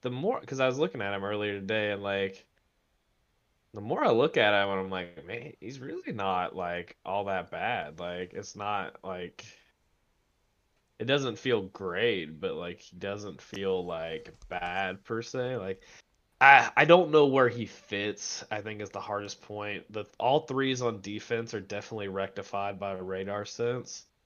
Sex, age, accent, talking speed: male, 20-39, American, 180 wpm